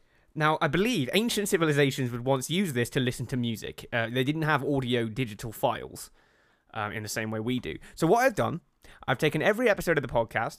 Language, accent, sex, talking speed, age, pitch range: English, British, male, 215 wpm, 20-39, 135-225 Hz